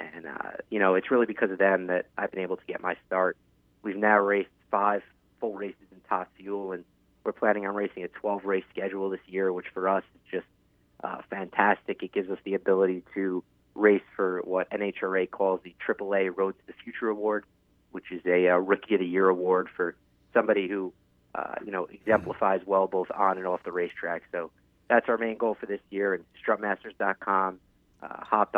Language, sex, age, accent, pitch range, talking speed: English, male, 30-49, American, 90-105 Hz, 200 wpm